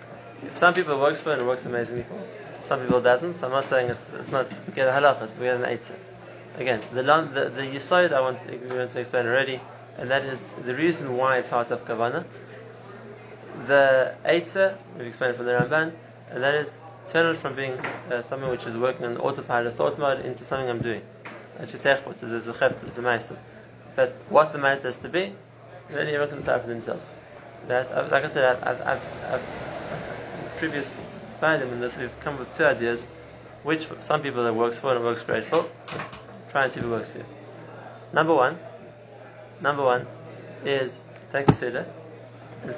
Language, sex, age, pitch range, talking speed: English, male, 20-39, 120-145 Hz, 190 wpm